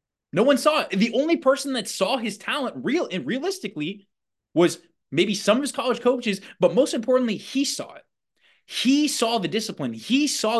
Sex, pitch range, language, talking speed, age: male, 155-210 Hz, English, 185 wpm, 20-39